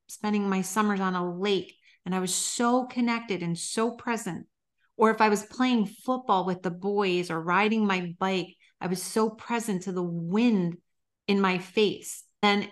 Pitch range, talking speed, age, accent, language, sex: 180-230 Hz, 180 wpm, 30-49, American, English, female